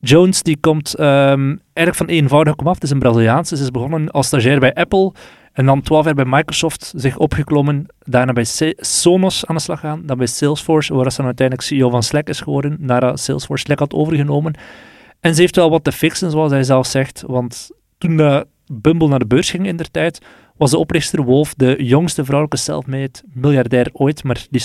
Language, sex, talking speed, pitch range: Dutch, male, 205 wpm, 130-155 Hz